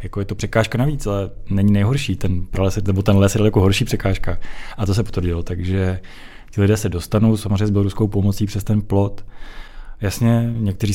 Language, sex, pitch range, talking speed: Czech, male, 95-105 Hz, 175 wpm